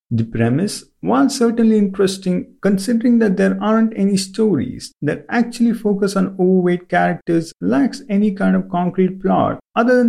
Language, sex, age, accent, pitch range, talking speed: English, male, 50-69, Indian, 165-220 Hz, 150 wpm